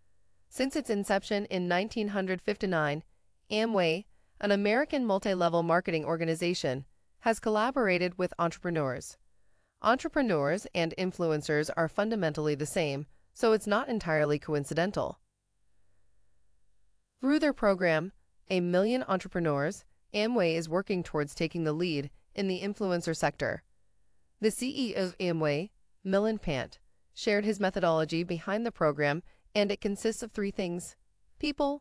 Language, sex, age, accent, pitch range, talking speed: English, female, 30-49, American, 150-205 Hz, 120 wpm